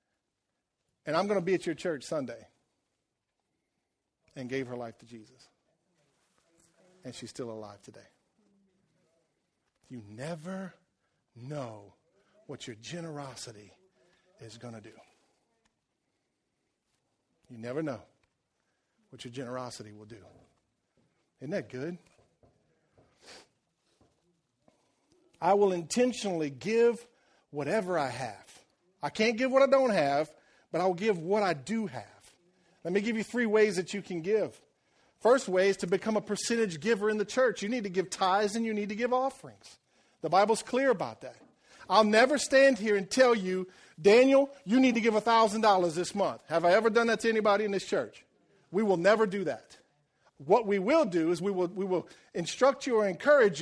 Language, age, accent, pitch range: English, 50-69, American, 145-220 Hz